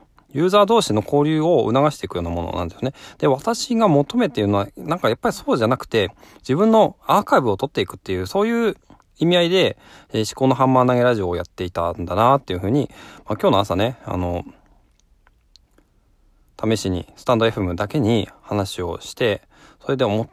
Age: 20-39